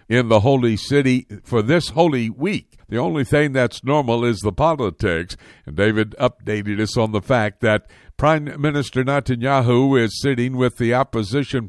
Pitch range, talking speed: 110-135 Hz, 165 wpm